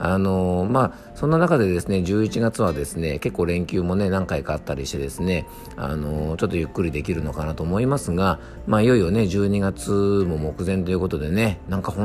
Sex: male